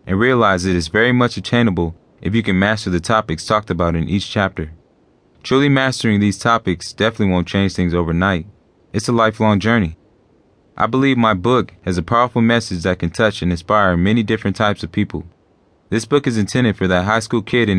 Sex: male